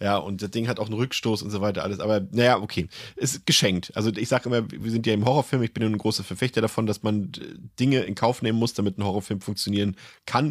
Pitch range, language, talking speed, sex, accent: 100-115 Hz, German, 265 wpm, male, German